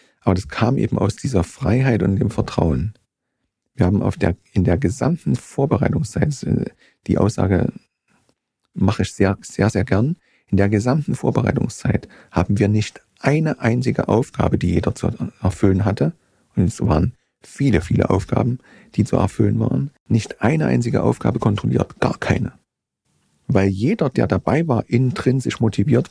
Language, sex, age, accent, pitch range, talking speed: German, male, 40-59, German, 95-125 Hz, 150 wpm